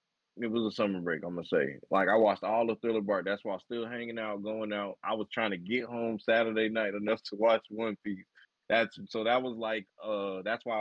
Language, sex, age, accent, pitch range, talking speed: English, male, 20-39, American, 95-115 Hz, 245 wpm